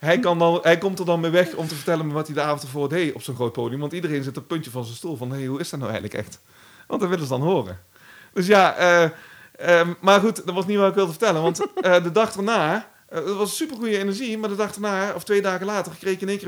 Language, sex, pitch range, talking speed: Dutch, male, 125-175 Hz, 290 wpm